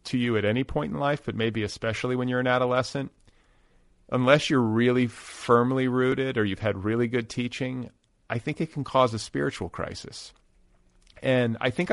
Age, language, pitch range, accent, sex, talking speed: 40-59, English, 100-120 Hz, American, male, 180 wpm